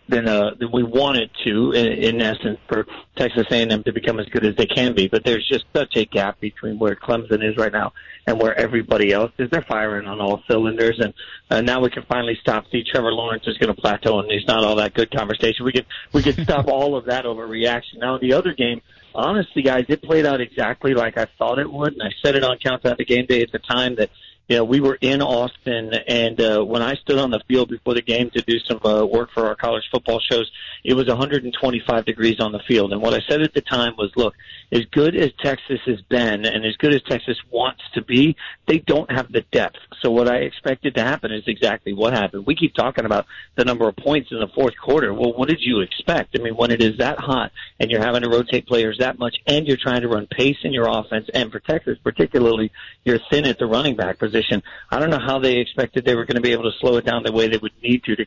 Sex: male